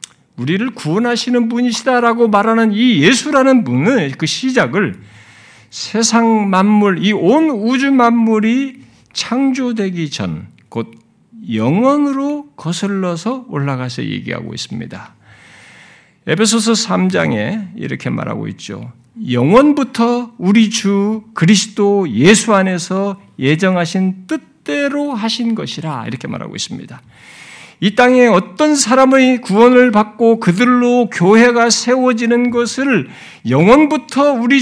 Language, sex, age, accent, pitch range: Korean, male, 50-69, native, 190-260 Hz